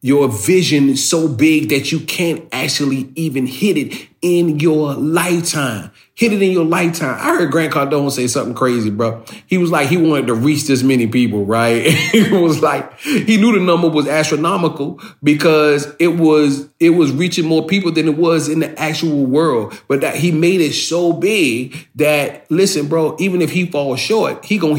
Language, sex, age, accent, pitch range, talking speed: English, male, 30-49, American, 130-165 Hz, 195 wpm